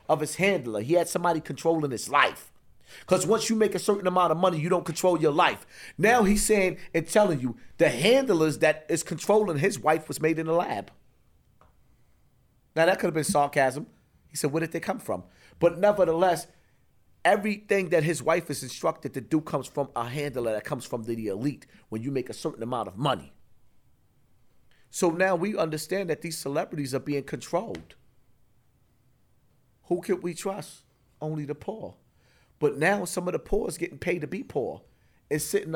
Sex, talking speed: male, 190 wpm